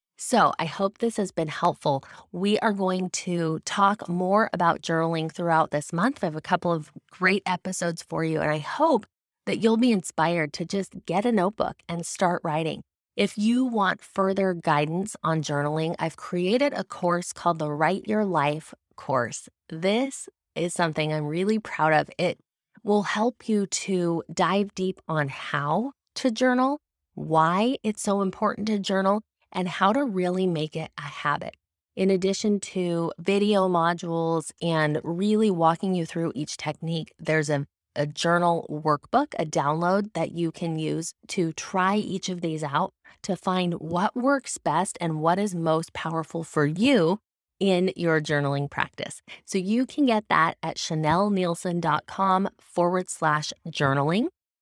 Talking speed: 160 wpm